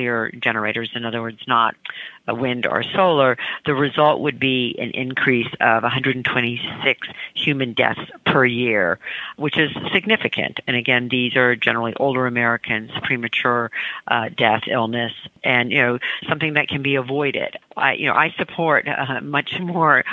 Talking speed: 150 wpm